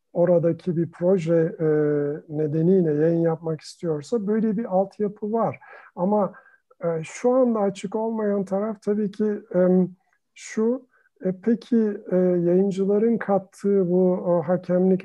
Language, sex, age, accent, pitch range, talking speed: Turkish, male, 50-69, native, 160-200 Hz, 100 wpm